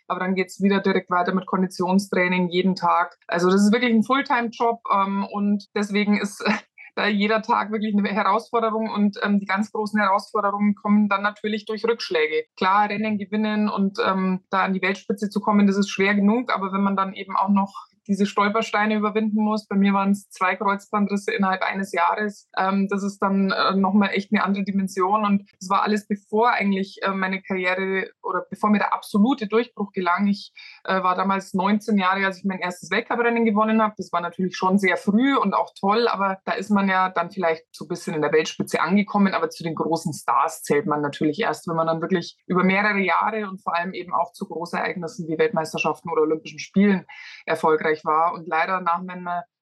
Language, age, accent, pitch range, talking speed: German, 20-39, German, 180-210 Hz, 205 wpm